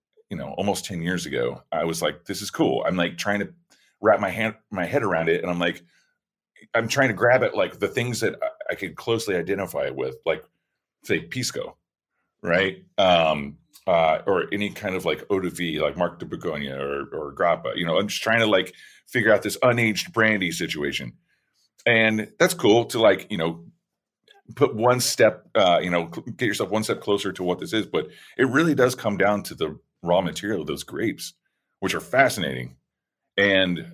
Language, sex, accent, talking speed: English, male, American, 200 wpm